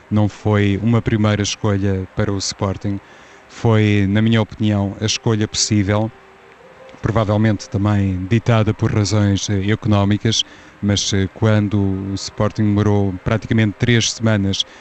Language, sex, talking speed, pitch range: Portuguese, male, 120 wpm, 100-115 Hz